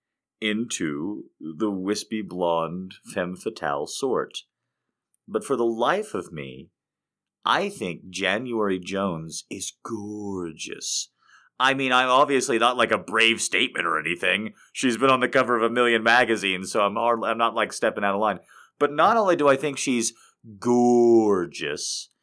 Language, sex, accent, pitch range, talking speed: English, male, American, 100-140 Hz, 155 wpm